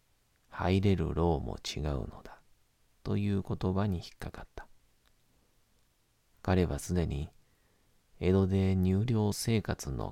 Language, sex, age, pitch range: Japanese, male, 40-59, 70-100 Hz